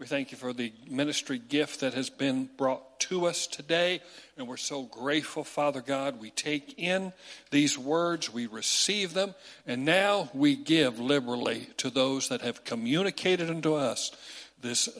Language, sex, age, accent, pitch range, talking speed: English, male, 60-79, American, 135-170 Hz, 165 wpm